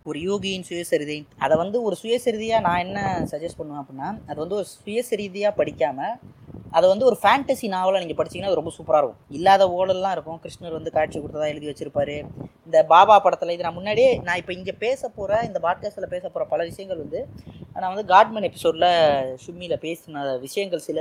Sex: female